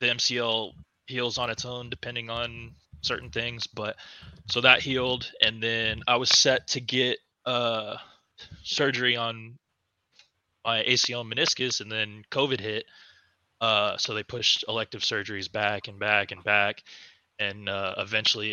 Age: 20-39